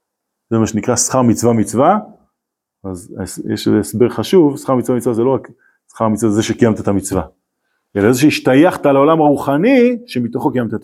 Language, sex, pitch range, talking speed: Hebrew, male, 110-160 Hz, 165 wpm